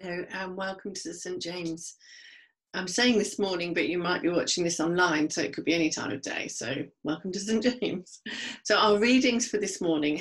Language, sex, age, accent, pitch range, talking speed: English, female, 40-59, British, 170-240 Hz, 210 wpm